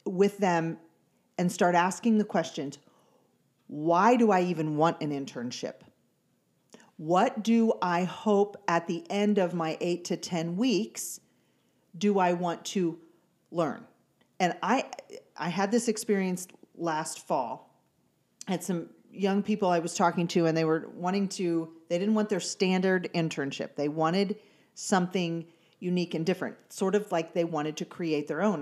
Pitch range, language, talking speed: 165-210 Hz, English, 155 wpm